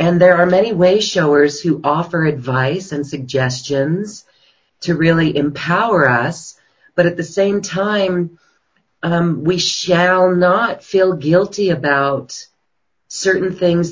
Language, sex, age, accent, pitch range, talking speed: English, female, 40-59, American, 145-180 Hz, 125 wpm